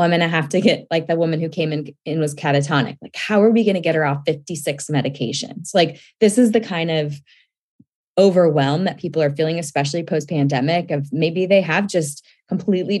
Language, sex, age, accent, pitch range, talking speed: English, female, 20-39, American, 150-180 Hz, 210 wpm